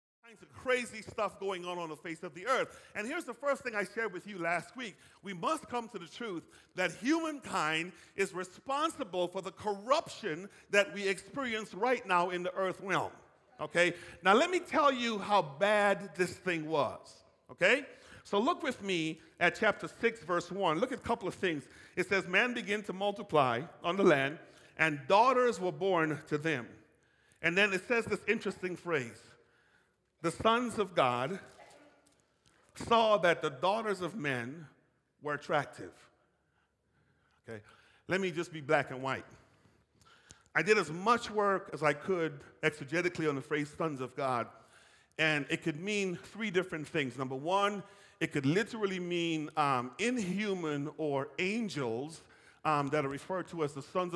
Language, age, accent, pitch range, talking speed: English, 40-59, American, 155-205 Hz, 170 wpm